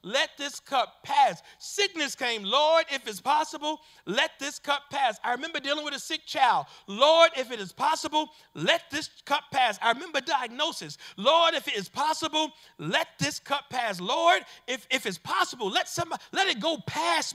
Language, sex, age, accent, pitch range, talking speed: English, male, 40-59, American, 235-330 Hz, 185 wpm